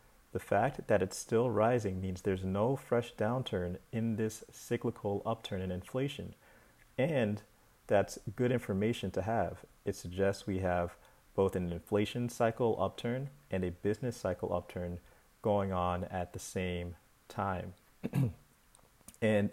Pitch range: 95-115 Hz